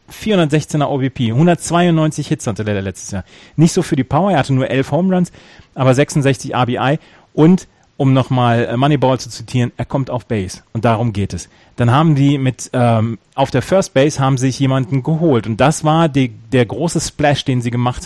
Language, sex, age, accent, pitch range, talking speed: German, male, 30-49, German, 115-145 Hz, 200 wpm